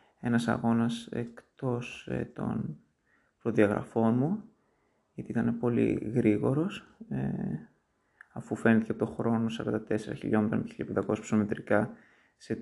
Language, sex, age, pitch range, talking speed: Greek, male, 20-39, 110-125 Hz, 105 wpm